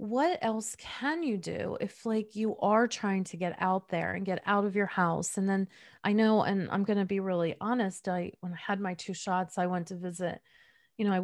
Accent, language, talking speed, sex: American, English, 235 wpm, female